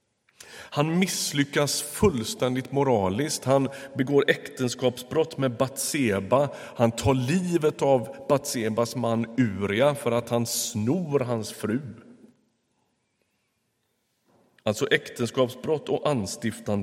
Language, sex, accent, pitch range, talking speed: Swedish, male, native, 110-135 Hz, 95 wpm